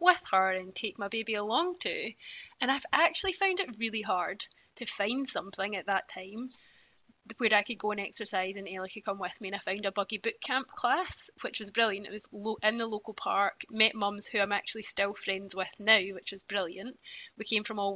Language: English